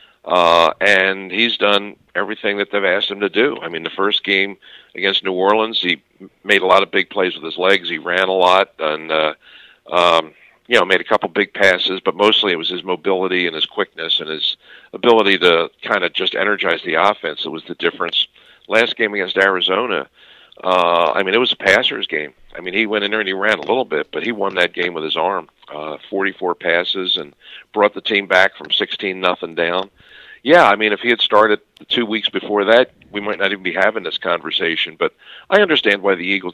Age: 50-69